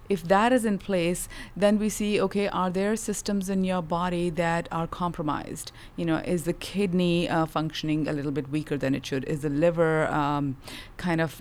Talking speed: 200 wpm